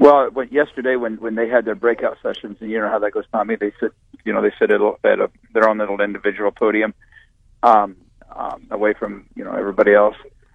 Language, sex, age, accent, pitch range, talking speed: English, male, 50-69, American, 105-125 Hz, 220 wpm